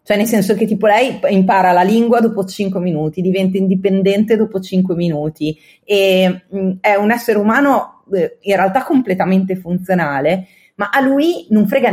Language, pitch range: Italian, 175-220 Hz